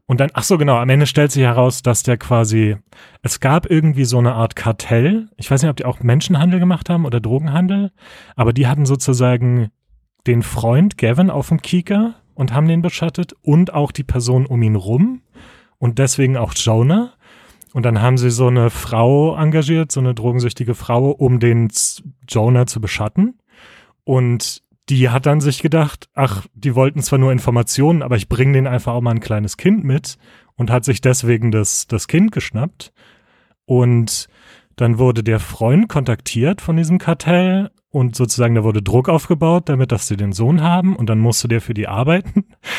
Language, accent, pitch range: German, German, 120-160 Hz